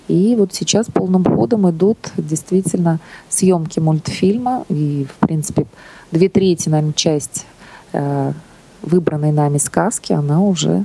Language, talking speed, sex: Russian, 120 wpm, female